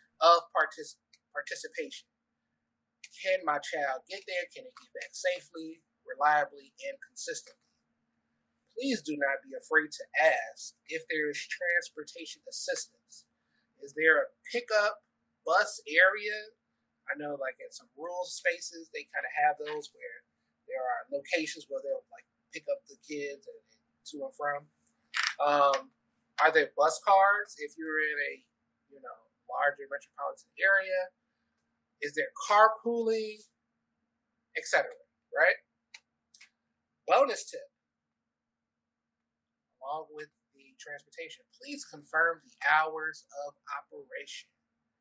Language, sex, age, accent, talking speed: English, male, 30-49, American, 125 wpm